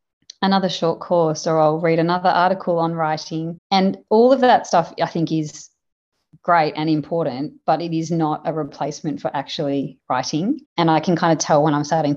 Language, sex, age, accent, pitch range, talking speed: English, female, 30-49, Australian, 150-175 Hz, 190 wpm